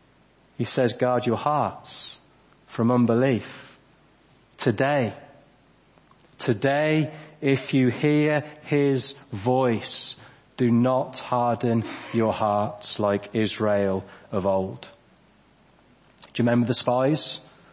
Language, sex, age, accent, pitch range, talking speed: English, male, 30-49, British, 125-155 Hz, 95 wpm